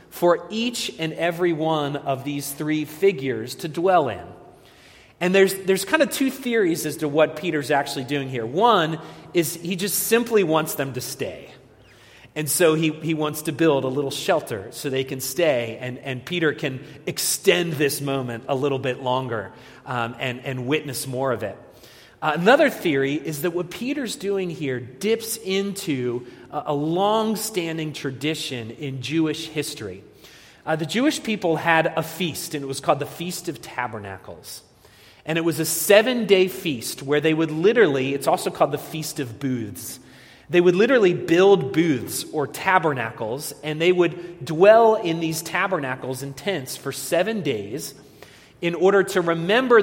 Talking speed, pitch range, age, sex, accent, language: 170 wpm, 135-180 Hz, 30-49, male, American, English